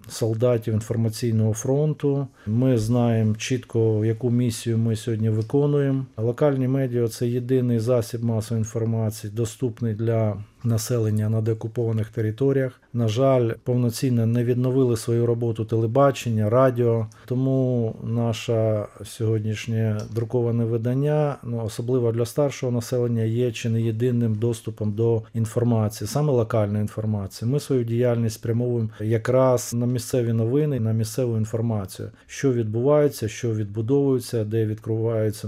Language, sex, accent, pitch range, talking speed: Russian, male, native, 110-125 Hz, 120 wpm